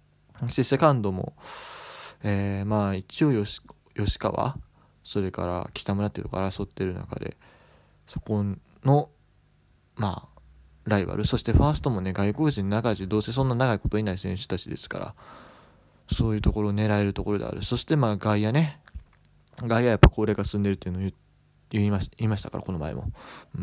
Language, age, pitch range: Japanese, 20-39, 100-125 Hz